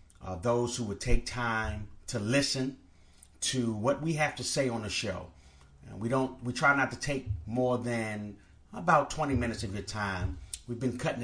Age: 30-49